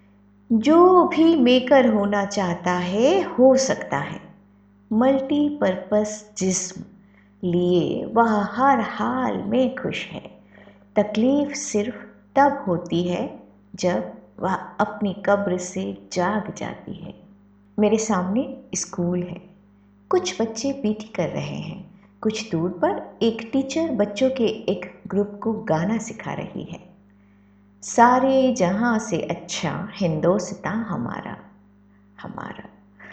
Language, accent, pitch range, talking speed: Hindi, native, 180-250 Hz, 110 wpm